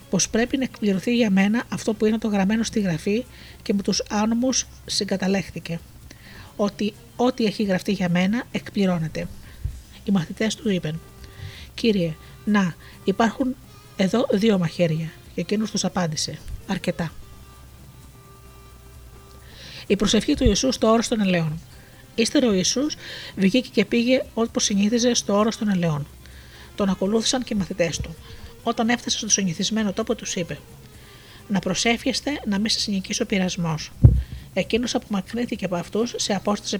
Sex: female